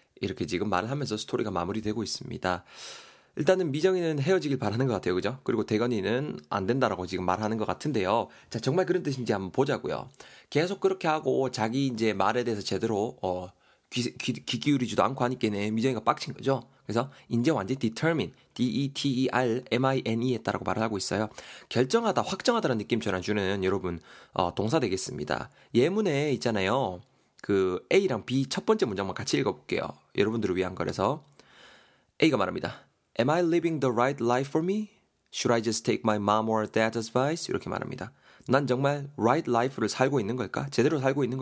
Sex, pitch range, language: male, 105-135 Hz, Korean